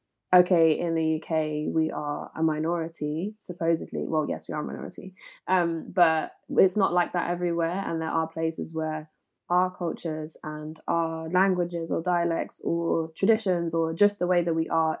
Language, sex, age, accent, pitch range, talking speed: English, female, 10-29, British, 160-175 Hz, 170 wpm